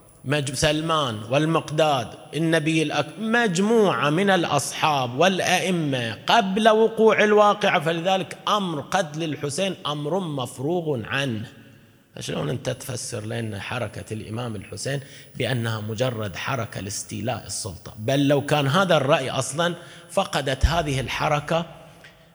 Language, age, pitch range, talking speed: Arabic, 30-49, 115-165 Hz, 105 wpm